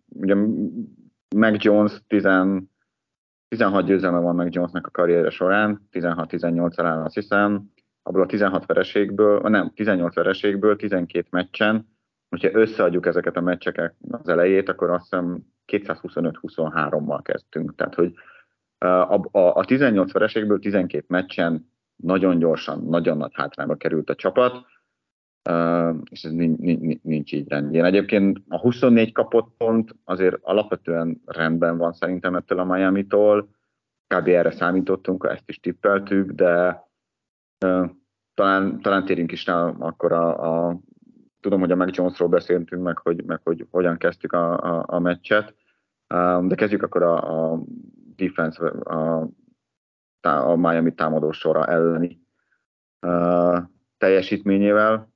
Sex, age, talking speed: male, 30-49, 130 wpm